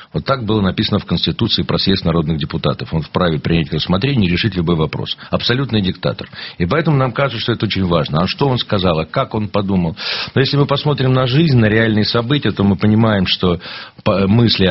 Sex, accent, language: male, native, Russian